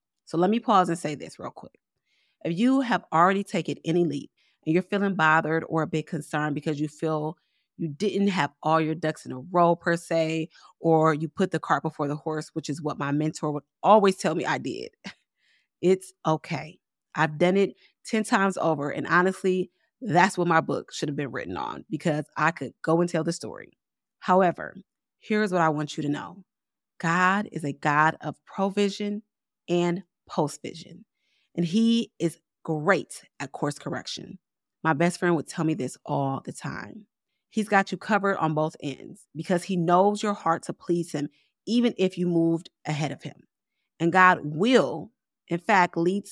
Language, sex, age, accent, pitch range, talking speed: English, female, 30-49, American, 155-195 Hz, 190 wpm